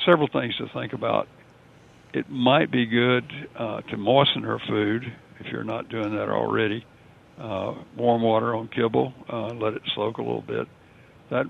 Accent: American